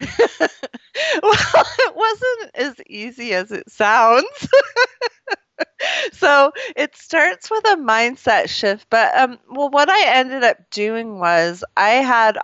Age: 30-49